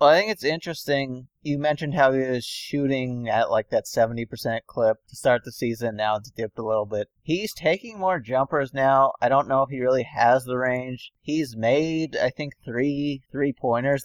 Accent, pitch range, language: American, 120-150 Hz, English